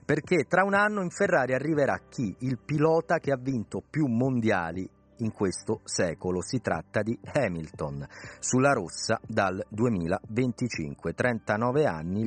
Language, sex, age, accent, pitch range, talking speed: Italian, male, 40-59, native, 100-135 Hz, 135 wpm